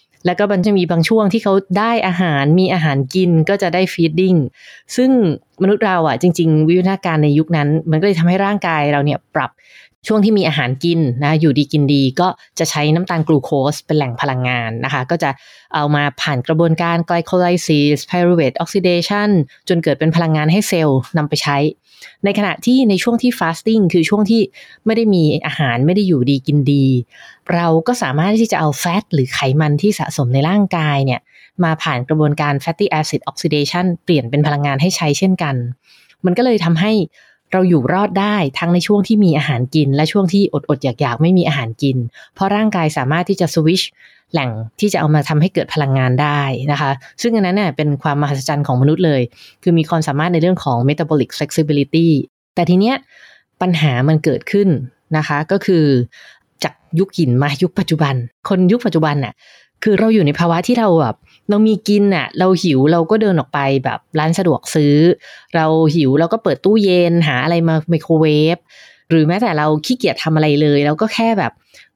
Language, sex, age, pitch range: English, female, 20-39, 145-185 Hz